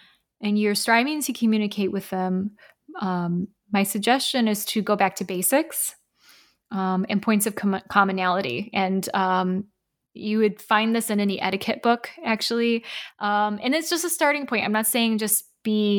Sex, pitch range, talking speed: female, 195-225 Hz, 170 wpm